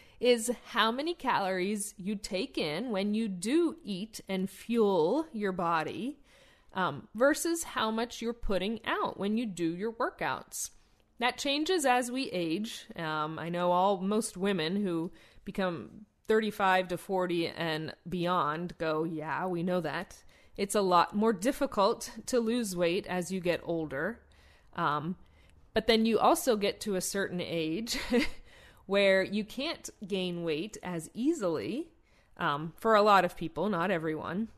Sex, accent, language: female, American, English